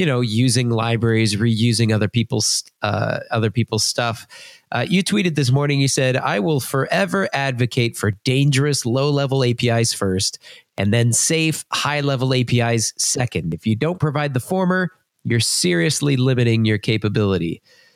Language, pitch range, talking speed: English, 115-145 Hz, 145 wpm